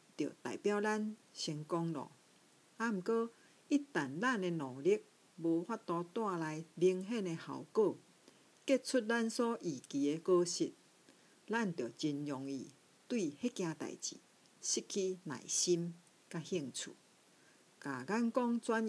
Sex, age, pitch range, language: female, 50-69, 165-230 Hz, Chinese